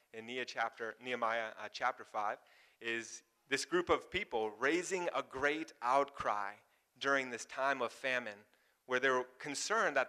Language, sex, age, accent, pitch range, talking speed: English, male, 30-49, American, 120-150 Hz, 135 wpm